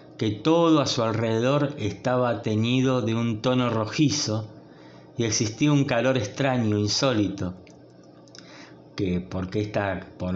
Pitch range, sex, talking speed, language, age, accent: 105-135 Hz, male, 120 wpm, Spanish, 20-39, Argentinian